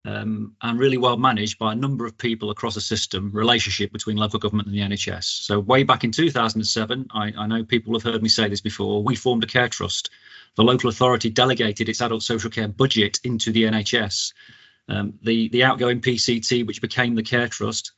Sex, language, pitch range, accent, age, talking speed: male, English, 110-125 Hz, British, 40-59, 205 wpm